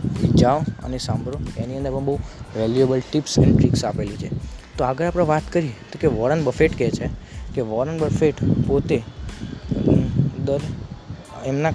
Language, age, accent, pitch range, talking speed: Gujarati, 20-39, native, 115-145 Hz, 155 wpm